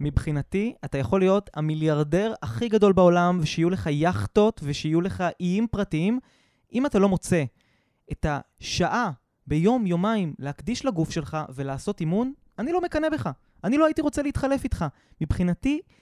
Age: 20-39